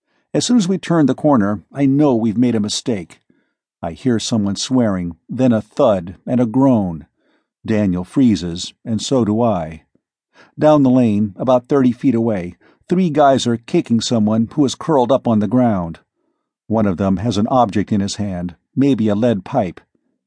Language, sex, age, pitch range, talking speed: English, male, 50-69, 105-140 Hz, 180 wpm